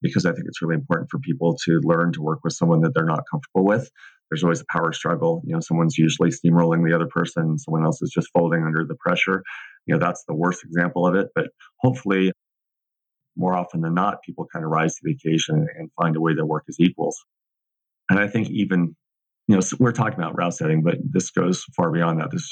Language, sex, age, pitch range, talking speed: English, male, 30-49, 80-90 Hz, 235 wpm